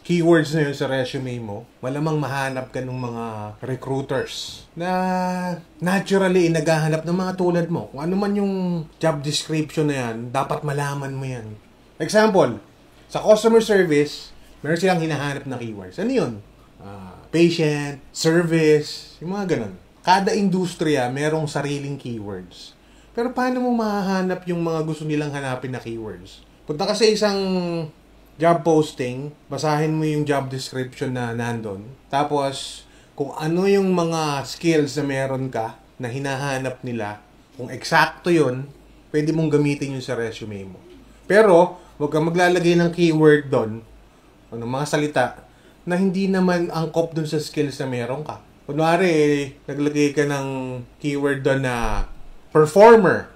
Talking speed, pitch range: 145 wpm, 130-170 Hz